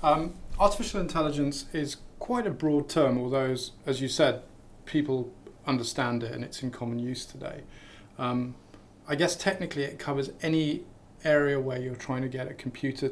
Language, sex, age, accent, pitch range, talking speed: English, male, 30-49, British, 120-140 Hz, 165 wpm